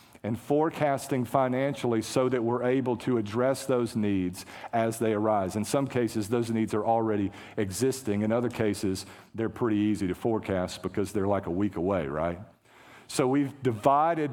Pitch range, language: 110-130 Hz, English